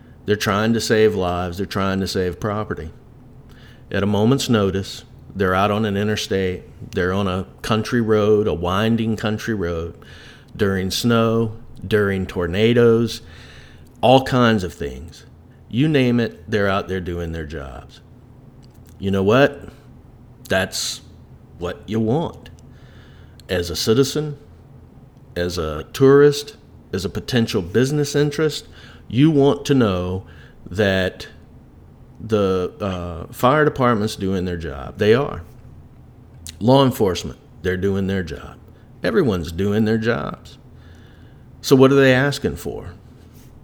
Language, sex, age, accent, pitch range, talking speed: English, male, 50-69, American, 95-125 Hz, 130 wpm